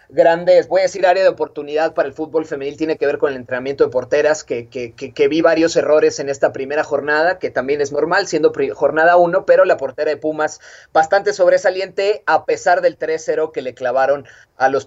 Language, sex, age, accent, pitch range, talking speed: Spanish, male, 30-49, Mexican, 155-220 Hz, 220 wpm